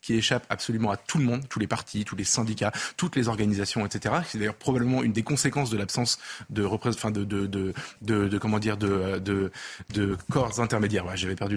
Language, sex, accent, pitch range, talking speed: French, male, French, 110-145 Hz, 225 wpm